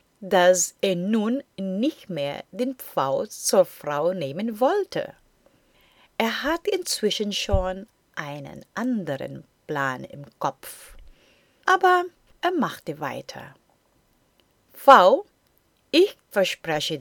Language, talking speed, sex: German, 95 wpm, female